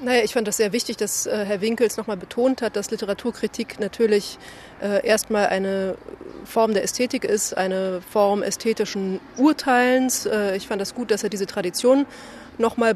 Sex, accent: female, German